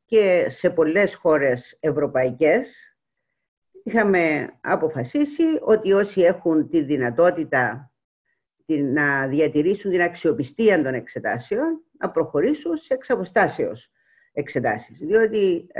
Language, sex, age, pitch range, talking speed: Greek, female, 50-69, 150-240 Hz, 90 wpm